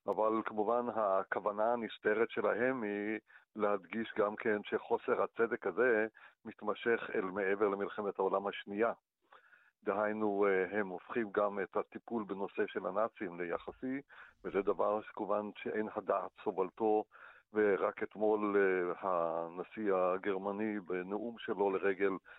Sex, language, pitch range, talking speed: male, Hebrew, 95-110 Hz, 110 wpm